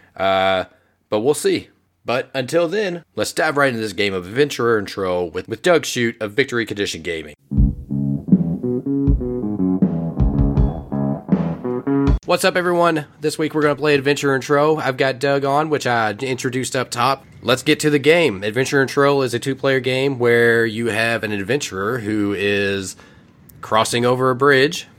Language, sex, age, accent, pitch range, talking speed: English, male, 20-39, American, 100-135 Hz, 165 wpm